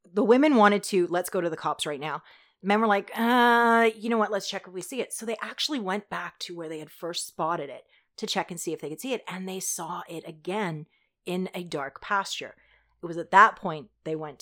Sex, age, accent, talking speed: female, 30-49, American, 255 wpm